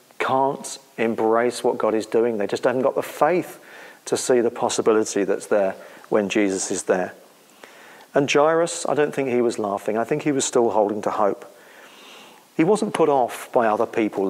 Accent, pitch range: British, 110-145 Hz